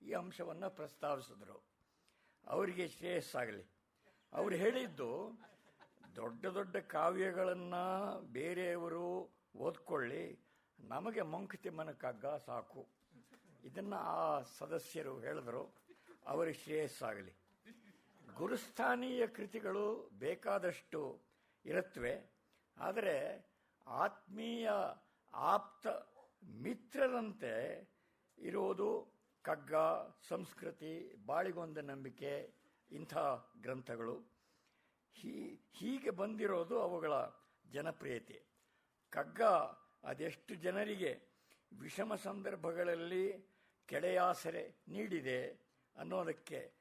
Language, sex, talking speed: Kannada, male, 65 wpm